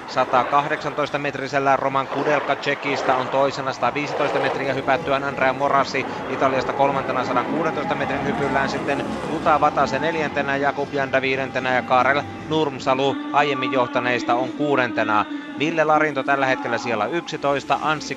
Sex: male